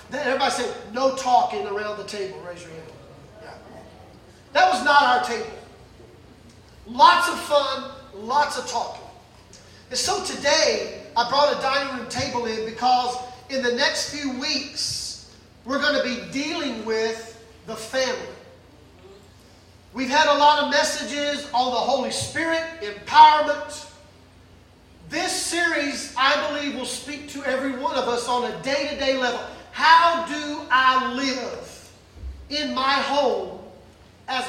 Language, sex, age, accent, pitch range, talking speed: English, male, 40-59, American, 250-305 Hz, 140 wpm